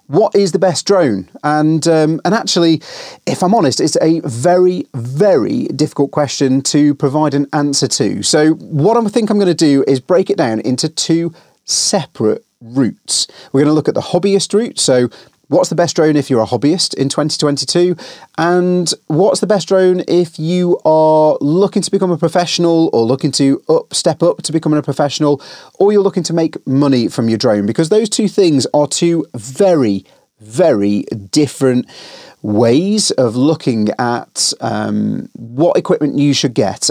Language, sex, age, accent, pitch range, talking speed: English, male, 30-49, British, 130-165 Hz, 175 wpm